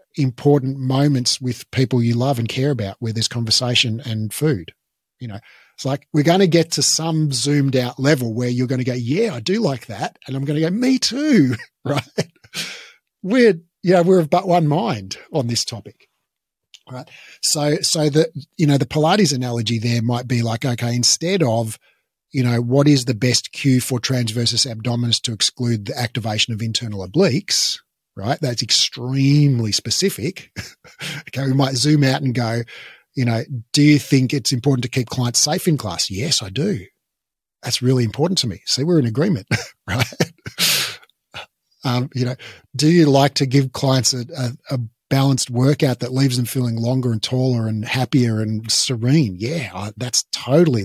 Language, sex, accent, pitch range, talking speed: English, male, Australian, 120-145 Hz, 180 wpm